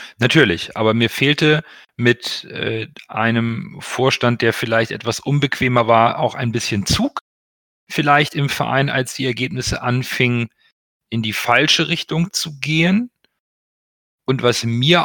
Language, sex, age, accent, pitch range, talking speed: German, male, 40-59, German, 110-140 Hz, 130 wpm